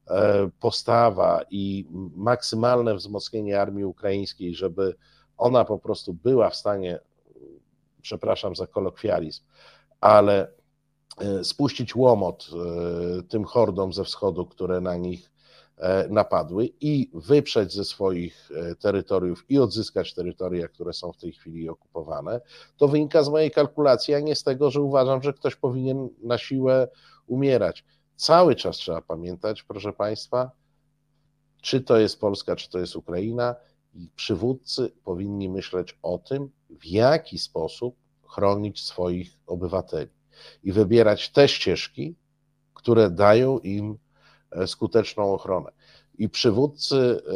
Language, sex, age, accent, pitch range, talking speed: Polish, male, 50-69, native, 95-135 Hz, 120 wpm